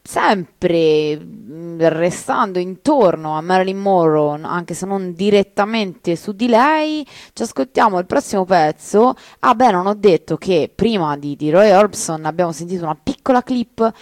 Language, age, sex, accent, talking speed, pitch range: Italian, 20-39, female, native, 145 wpm, 155-210 Hz